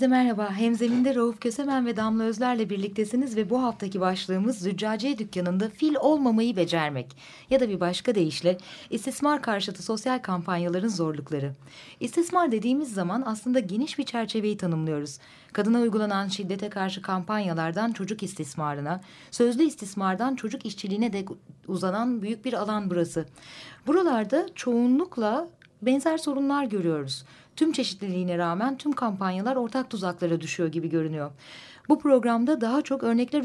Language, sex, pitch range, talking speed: Turkish, female, 185-260 Hz, 130 wpm